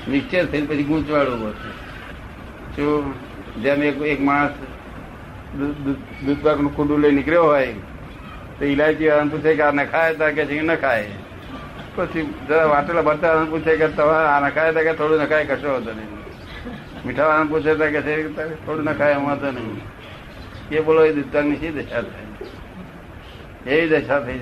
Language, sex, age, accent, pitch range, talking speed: Gujarati, male, 60-79, native, 135-165 Hz, 70 wpm